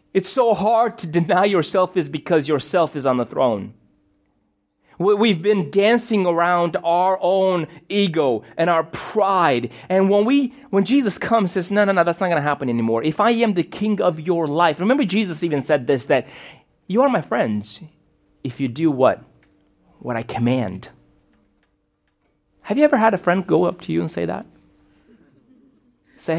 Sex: male